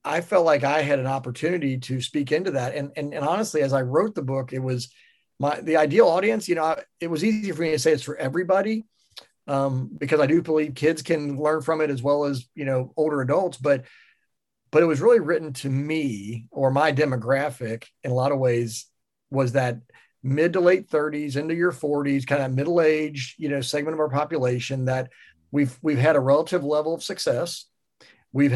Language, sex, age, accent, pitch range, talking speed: English, male, 40-59, American, 135-165 Hz, 210 wpm